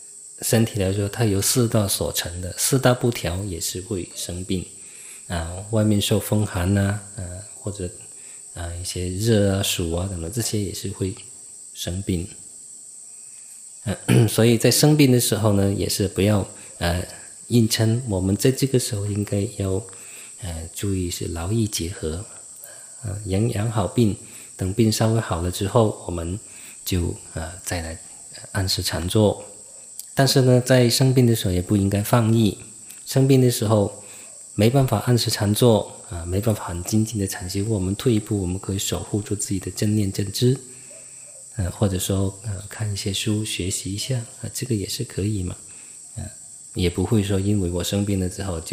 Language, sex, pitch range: English, male, 90-115 Hz